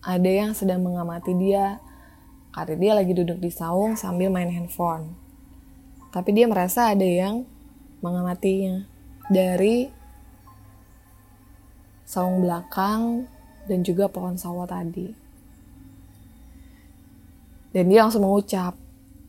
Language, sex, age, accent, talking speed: Indonesian, female, 20-39, native, 100 wpm